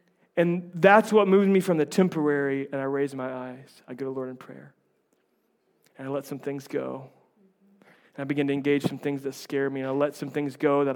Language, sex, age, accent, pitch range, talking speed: English, male, 30-49, American, 145-185 Hz, 230 wpm